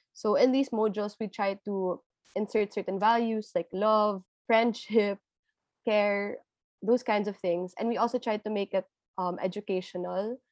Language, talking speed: English, 155 wpm